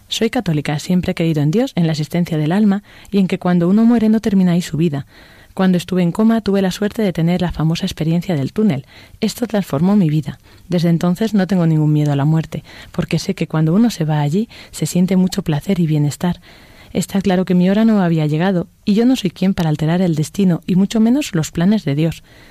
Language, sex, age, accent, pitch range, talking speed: Spanish, female, 30-49, Spanish, 160-195 Hz, 235 wpm